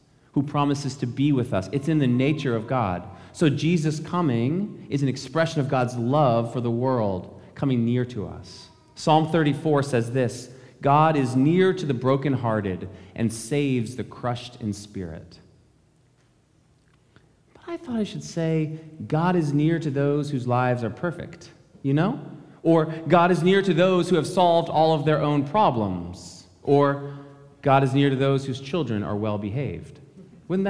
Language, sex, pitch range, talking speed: English, male, 120-165 Hz, 170 wpm